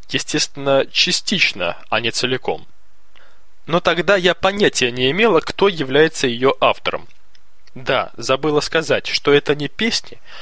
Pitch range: 140-175 Hz